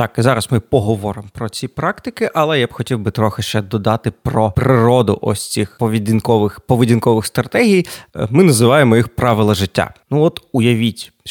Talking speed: 155 wpm